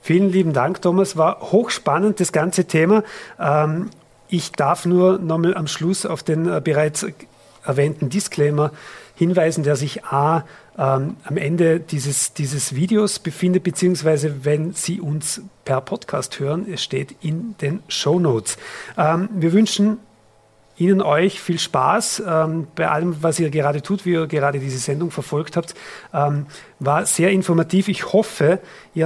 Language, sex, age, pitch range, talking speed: German, male, 40-59, 140-175 Hz, 145 wpm